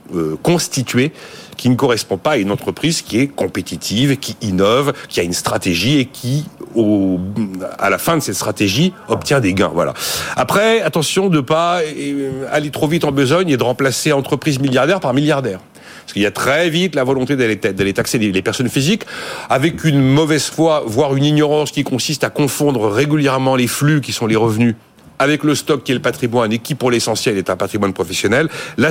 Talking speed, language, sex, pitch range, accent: 195 wpm, French, male, 115-150 Hz, French